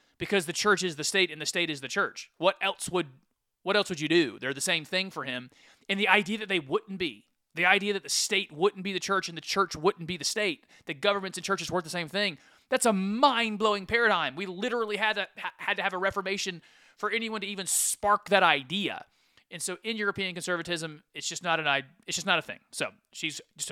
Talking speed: 240 wpm